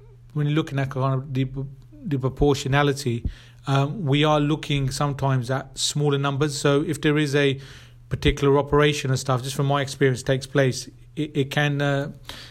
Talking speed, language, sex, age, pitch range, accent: 175 wpm, English, male, 30-49, 135-150 Hz, British